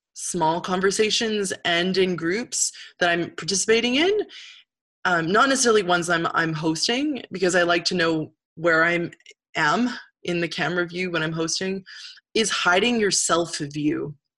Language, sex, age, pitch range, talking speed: English, female, 20-39, 170-250 Hz, 145 wpm